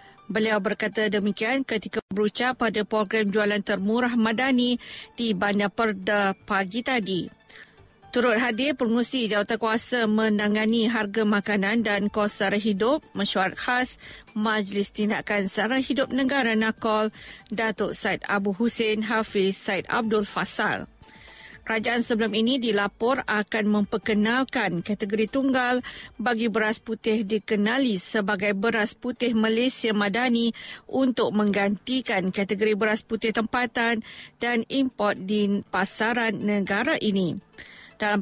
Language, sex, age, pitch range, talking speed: Malay, female, 50-69, 205-235 Hz, 115 wpm